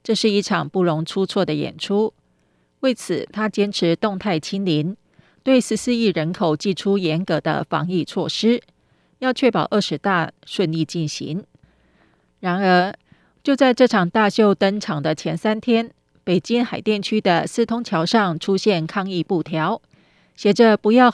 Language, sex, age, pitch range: Chinese, female, 30-49, 170-220 Hz